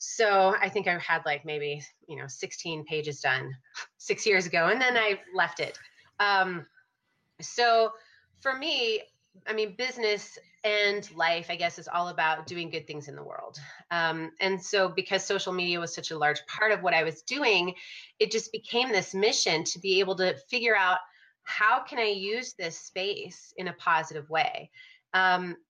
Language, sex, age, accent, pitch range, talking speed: English, female, 30-49, American, 160-215 Hz, 180 wpm